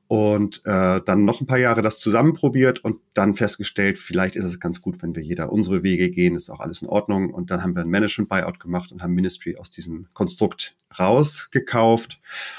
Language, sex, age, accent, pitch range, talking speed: German, male, 30-49, German, 95-120 Hz, 200 wpm